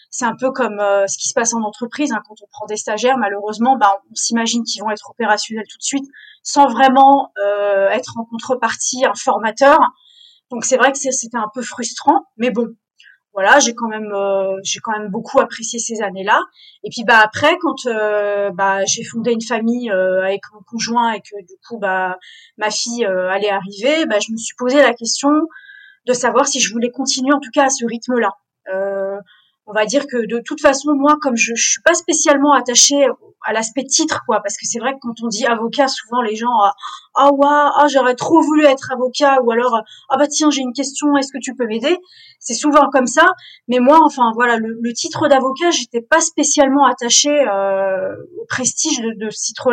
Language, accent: French, French